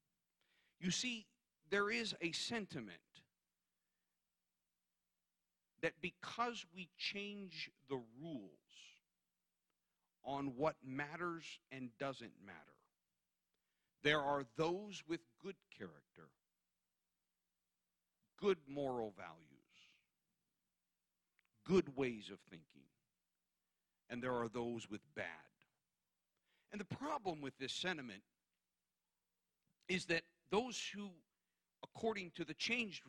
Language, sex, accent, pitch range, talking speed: English, male, American, 110-185 Hz, 90 wpm